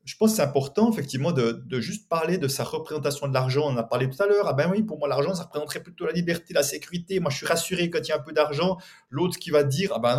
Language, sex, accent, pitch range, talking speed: French, male, French, 135-190 Hz, 305 wpm